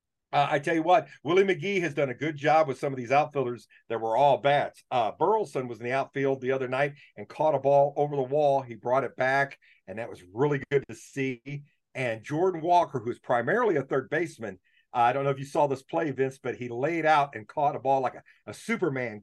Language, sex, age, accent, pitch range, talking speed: English, male, 50-69, American, 125-155 Hz, 245 wpm